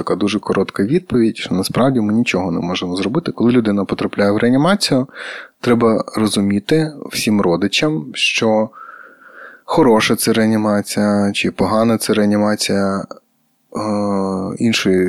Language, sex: Ukrainian, male